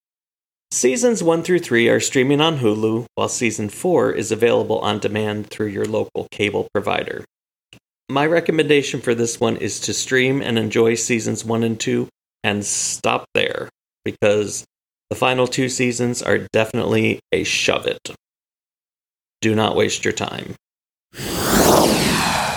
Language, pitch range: English, 110-140 Hz